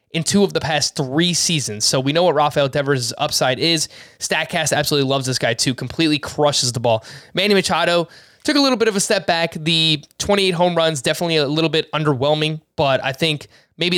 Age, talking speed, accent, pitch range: 20-39, 205 wpm, American, 135-165 Hz